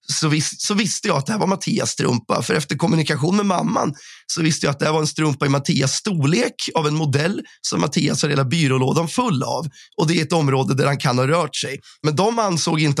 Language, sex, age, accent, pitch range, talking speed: Swedish, male, 30-49, native, 140-180 Hz, 245 wpm